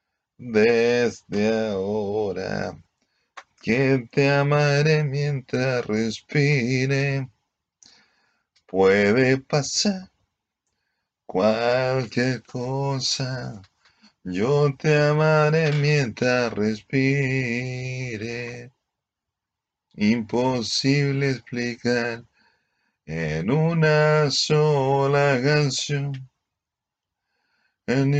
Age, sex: 30-49, male